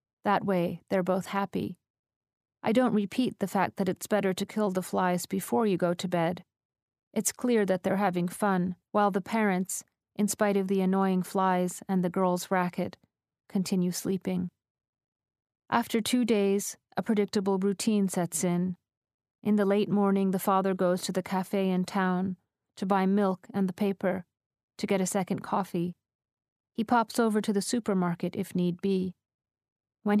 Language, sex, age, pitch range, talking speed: English, female, 40-59, 180-205 Hz, 165 wpm